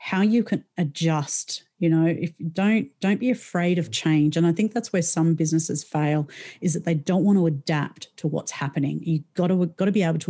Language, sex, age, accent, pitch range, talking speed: English, female, 40-59, Australian, 160-185 Hz, 235 wpm